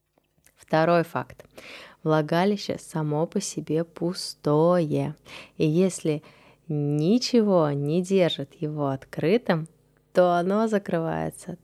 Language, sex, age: Russian, female, 20-39